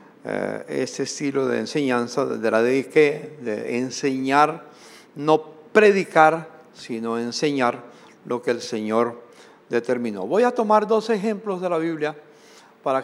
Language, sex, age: English, male, 60-79